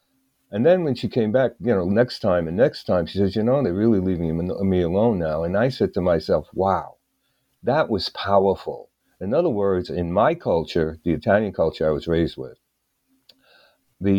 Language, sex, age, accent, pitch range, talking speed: English, male, 50-69, American, 90-105 Hz, 195 wpm